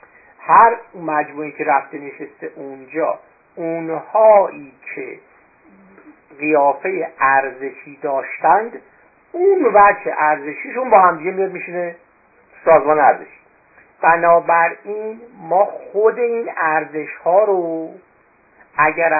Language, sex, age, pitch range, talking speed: Persian, male, 50-69, 155-210 Hz, 95 wpm